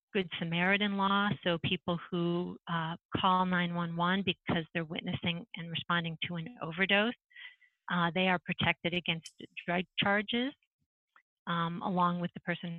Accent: American